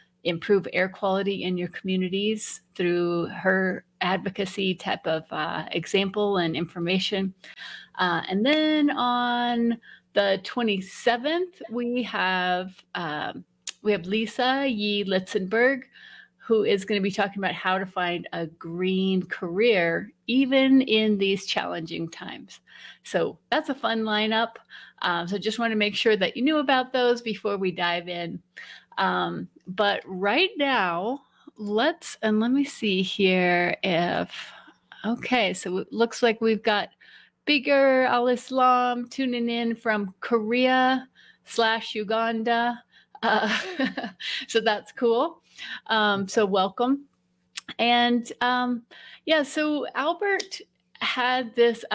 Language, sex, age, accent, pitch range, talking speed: English, female, 30-49, American, 190-245 Hz, 125 wpm